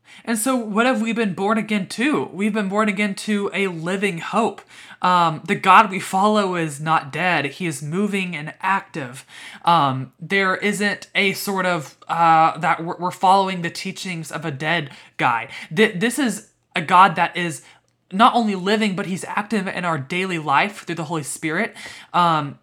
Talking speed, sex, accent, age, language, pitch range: 180 wpm, male, American, 20-39, English, 165-210 Hz